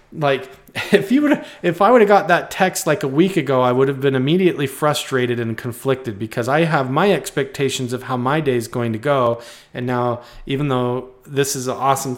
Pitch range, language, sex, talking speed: 125-150 Hz, English, male, 210 wpm